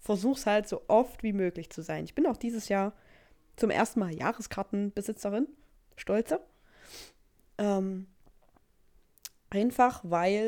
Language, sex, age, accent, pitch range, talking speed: German, female, 20-39, German, 185-245 Hz, 120 wpm